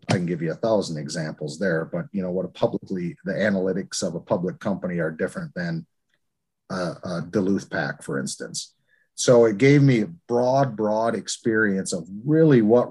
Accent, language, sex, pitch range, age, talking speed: American, English, male, 90-110 Hz, 40-59, 185 wpm